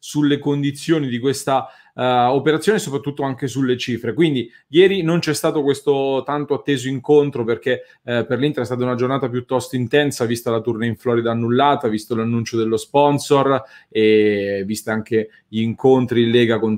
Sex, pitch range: male, 115-140 Hz